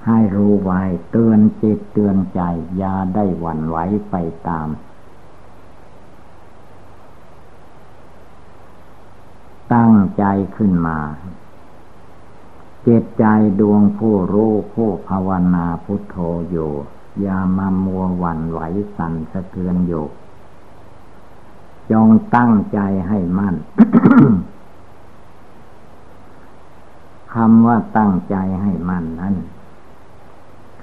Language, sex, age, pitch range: Thai, male, 60-79, 85-105 Hz